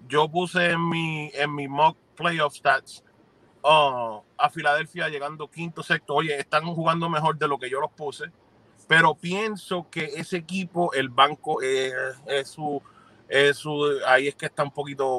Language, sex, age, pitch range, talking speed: Spanish, male, 30-49, 135-170 Hz, 170 wpm